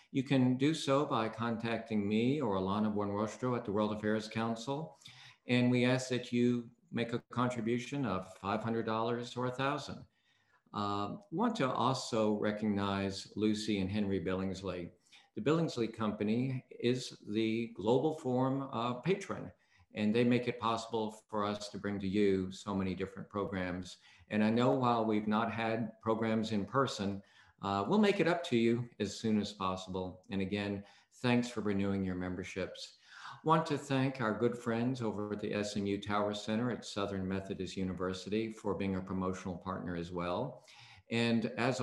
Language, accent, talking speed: English, American, 160 wpm